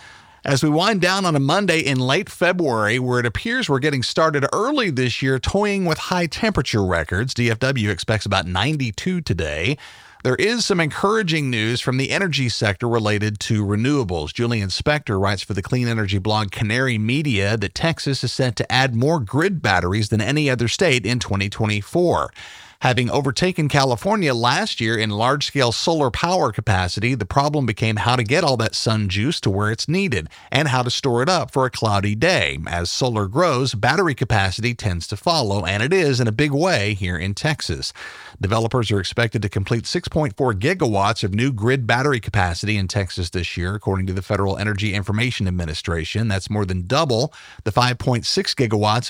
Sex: male